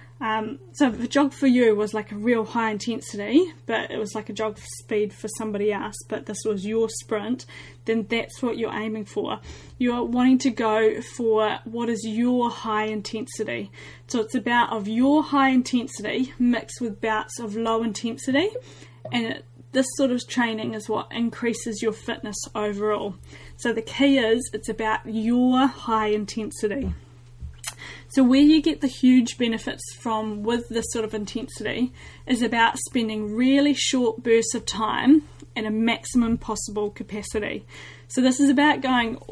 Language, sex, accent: English, female, Australian